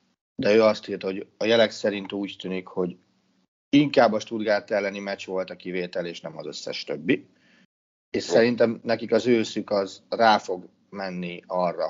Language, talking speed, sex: Hungarian, 170 wpm, male